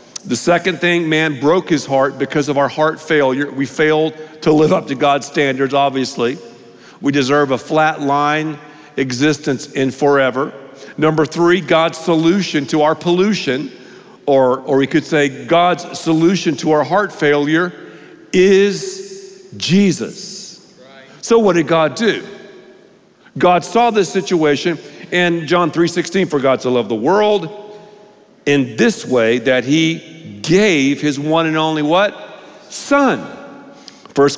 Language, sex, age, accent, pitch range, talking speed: English, male, 50-69, American, 145-190 Hz, 140 wpm